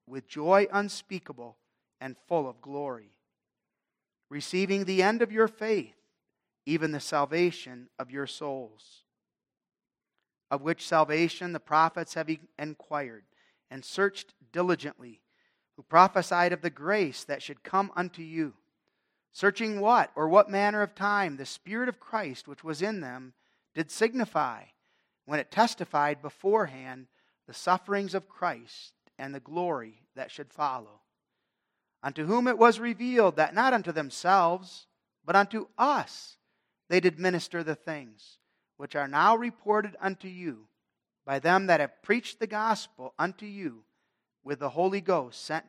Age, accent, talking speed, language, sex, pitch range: 40-59, American, 140 wpm, English, male, 140-195 Hz